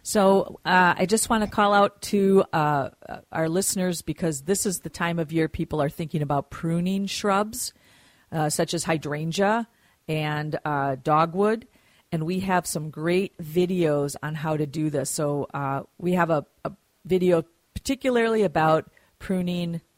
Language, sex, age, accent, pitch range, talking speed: English, female, 50-69, American, 155-185 Hz, 160 wpm